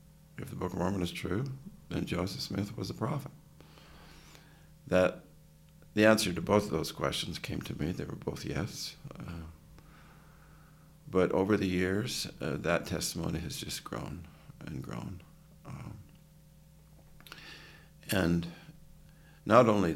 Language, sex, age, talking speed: English, male, 50-69, 135 wpm